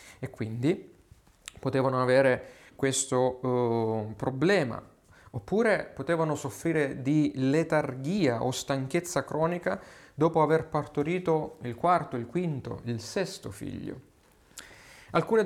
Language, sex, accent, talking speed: Italian, male, native, 95 wpm